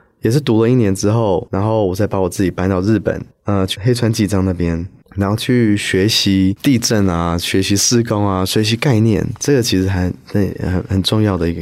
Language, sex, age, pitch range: Chinese, male, 20-39, 95-115 Hz